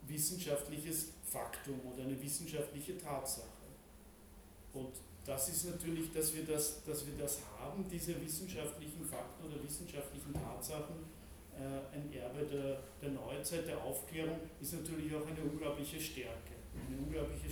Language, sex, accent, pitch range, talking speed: German, male, German, 125-155 Hz, 125 wpm